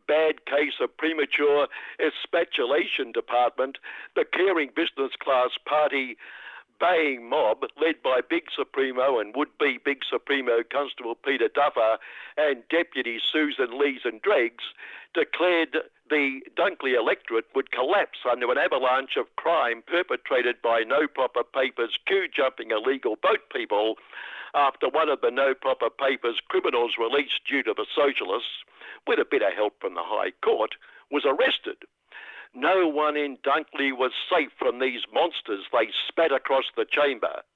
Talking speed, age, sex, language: 140 wpm, 60-79, male, English